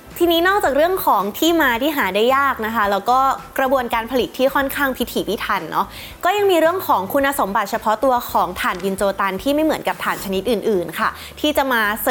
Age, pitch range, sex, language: 20-39, 215-285 Hz, female, Thai